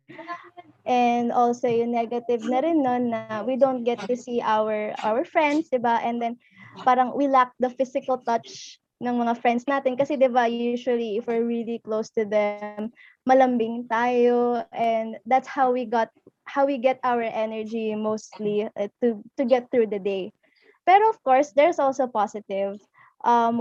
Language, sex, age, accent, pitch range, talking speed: Filipino, female, 20-39, native, 225-265 Hz, 165 wpm